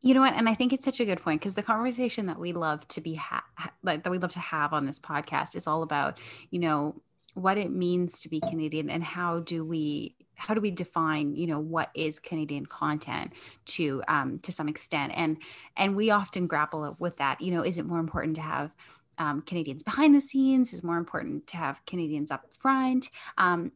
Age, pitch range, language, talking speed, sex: 20-39, 160-200 Hz, English, 225 wpm, female